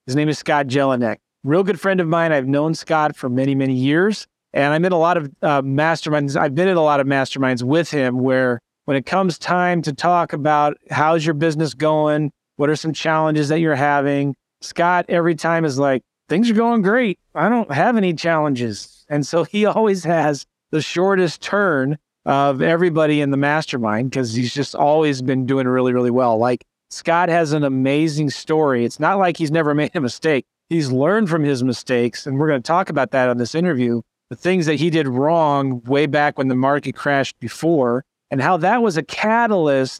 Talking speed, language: 205 wpm, English